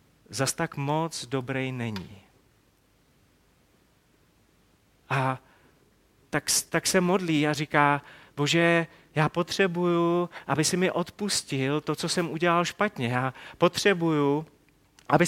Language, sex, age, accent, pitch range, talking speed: Czech, male, 30-49, native, 140-180 Hz, 105 wpm